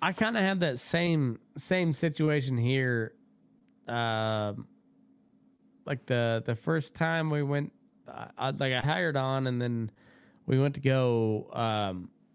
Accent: American